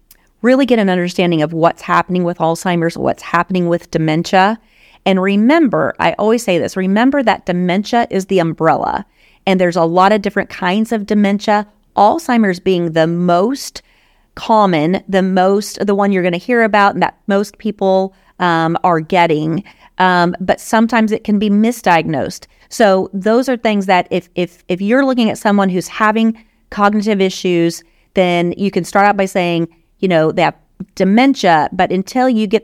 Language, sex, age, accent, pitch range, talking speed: English, female, 30-49, American, 180-225 Hz, 170 wpm